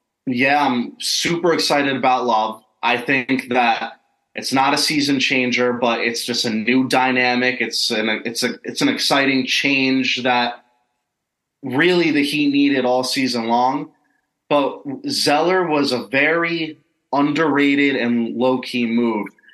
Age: 20-39